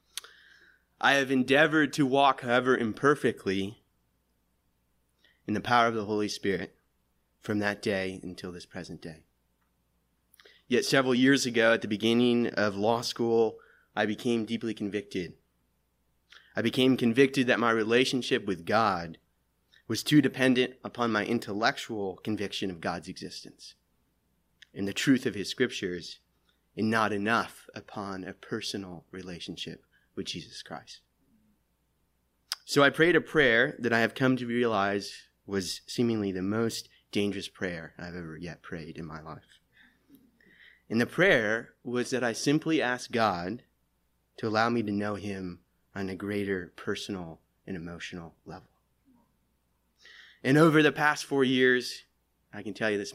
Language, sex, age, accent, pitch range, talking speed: English, male, 30-49, American, 85-120 Hz, 140 wpm